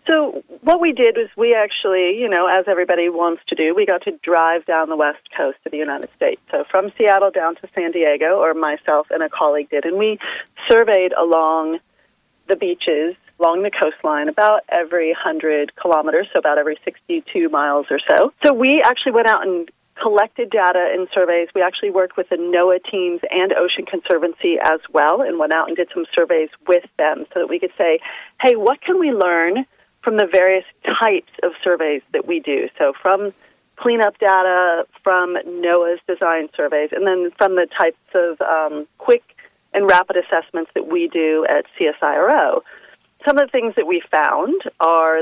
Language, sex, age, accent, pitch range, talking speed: English, female, 30-49, American, 165-265 Hz, 185 wpm